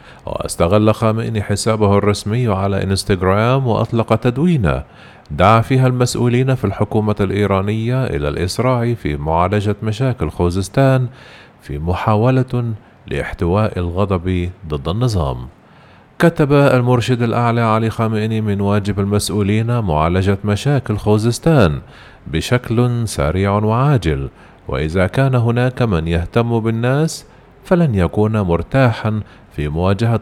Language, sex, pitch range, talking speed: Arabic, male, 95-125 Hz, 100 wpm